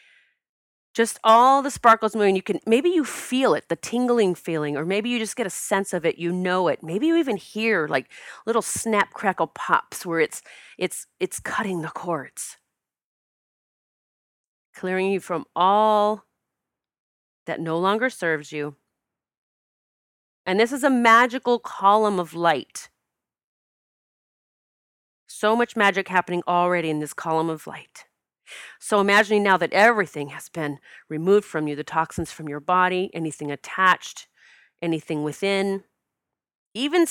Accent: American